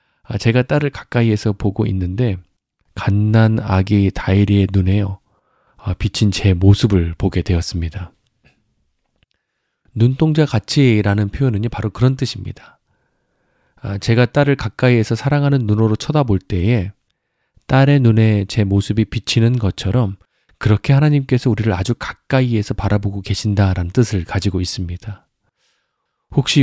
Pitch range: 95-125 Hz